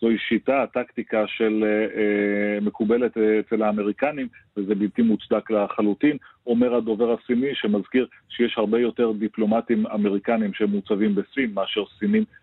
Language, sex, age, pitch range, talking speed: Hebrew, male, 40-59, 105-115 Hz, 115 wpm